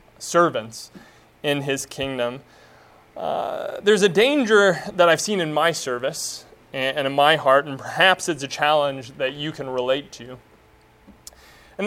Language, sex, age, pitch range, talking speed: English, male, 30-49, 135-175 Hz, 145 wpm